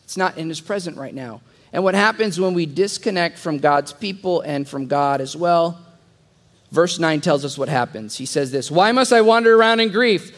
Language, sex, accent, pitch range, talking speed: English, male, American, 160-240 Hz, 215 wpm